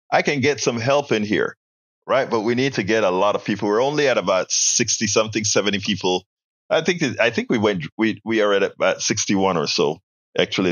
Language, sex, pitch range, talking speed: English, male, 105-140 Hz, 230 wpm